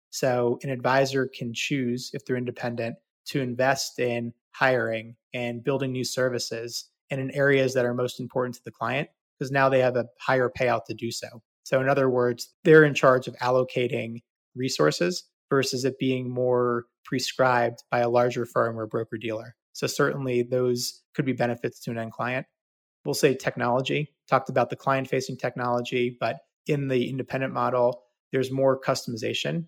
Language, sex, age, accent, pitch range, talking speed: English, male, 30-49, American, 120-130 Hz, 170 wpm